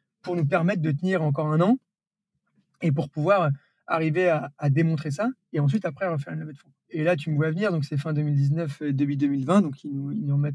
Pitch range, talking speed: 145-175 Hz, 230 wpm